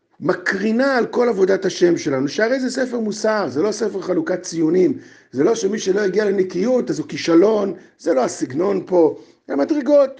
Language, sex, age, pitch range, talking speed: Hebrew, male, 50-69, 170-280 Hz, 175 wpm